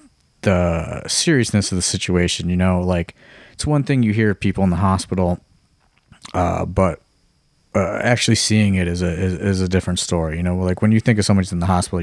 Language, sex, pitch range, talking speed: English, male, 90-105 Hz, 205 wpm